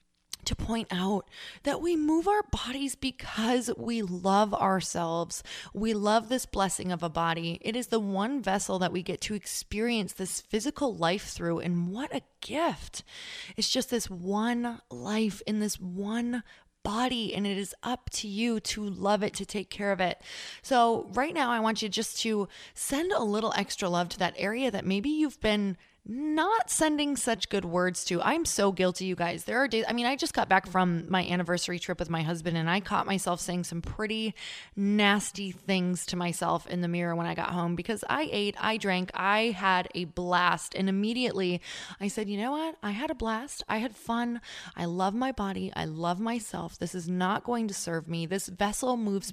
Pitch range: 180-230 Hz